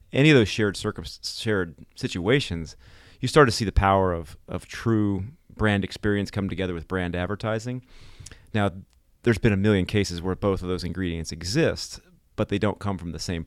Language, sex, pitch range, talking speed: English, male, 90-110 Hz, 185 wpm